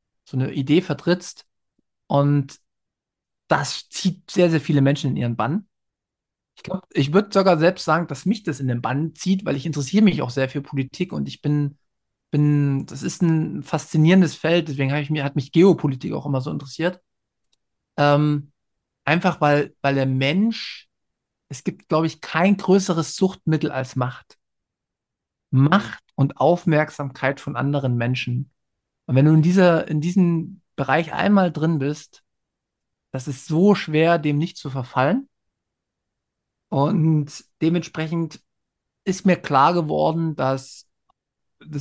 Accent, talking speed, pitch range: German, 145 wpm, 140-180 Hz